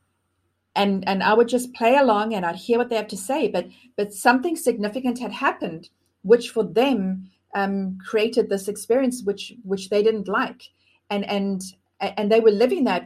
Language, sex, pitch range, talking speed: English, female, 185-230 Hz, 185 wpm